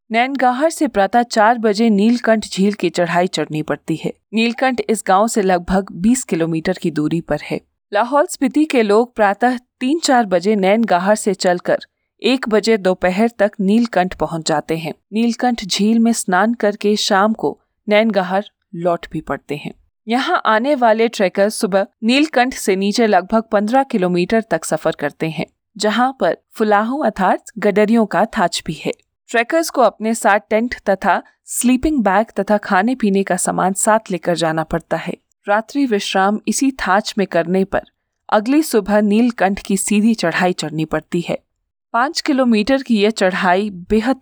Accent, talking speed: native, 160 wpm